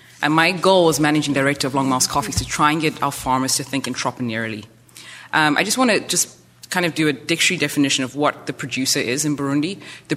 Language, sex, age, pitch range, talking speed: English, female, 30-49, 125-155 Hz, 230 wpm